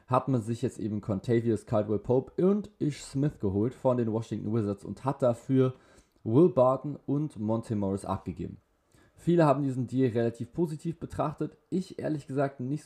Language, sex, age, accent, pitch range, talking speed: German, male, 20-39, German, 100-125 Hz, 170 wpm